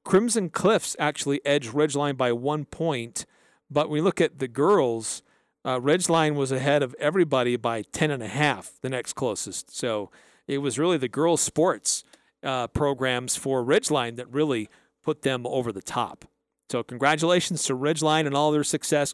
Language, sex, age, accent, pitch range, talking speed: English, male, 40-59, American, 135-170 Hz, 165 wpm